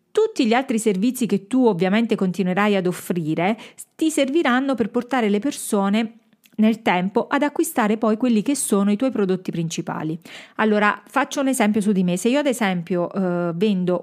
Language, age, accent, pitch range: Italian, 40-59, native, 195-250 Hz